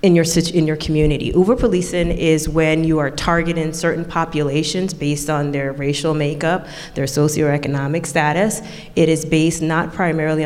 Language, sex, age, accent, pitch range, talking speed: English, female, 30-49, American, 150-170 Hz, 150 wpm